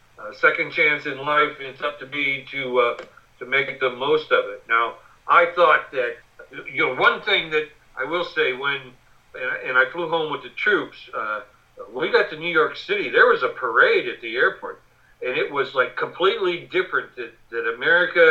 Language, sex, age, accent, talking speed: English, male, 60-79, American, 200 wpm